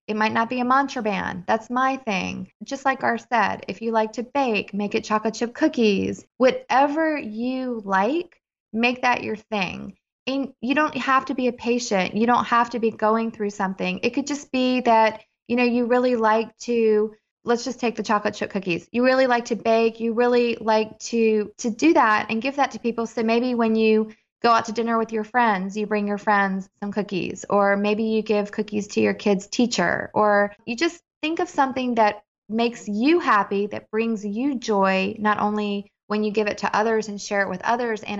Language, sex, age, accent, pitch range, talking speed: English, female, 20-39, American, 205-245 Hz, 210 wpm